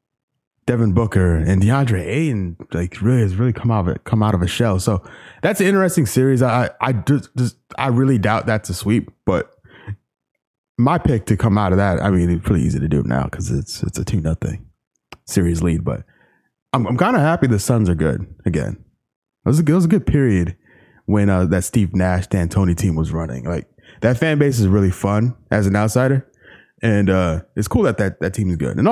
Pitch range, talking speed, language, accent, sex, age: 90-125 Hz, 220 wpm, English, American, male, 20-39